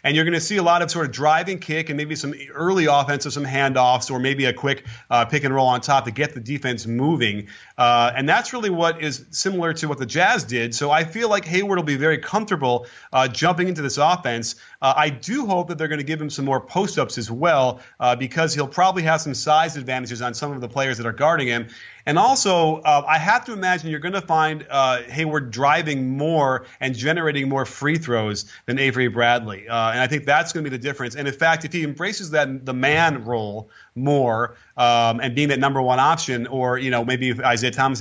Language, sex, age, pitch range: English, male, 30-49, 125-160 Hz